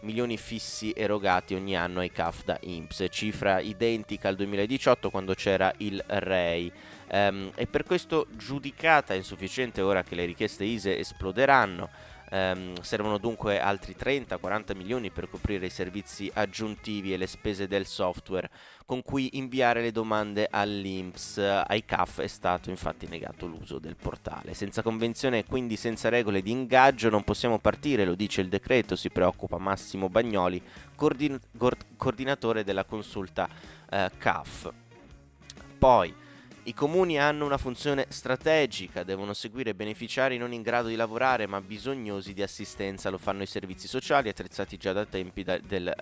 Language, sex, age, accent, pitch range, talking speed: Italian, male, 20-39, native, 95-115 Hz, 145 wpm